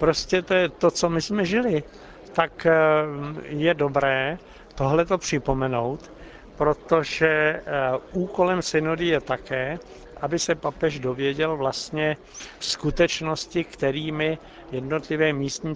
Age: 60-79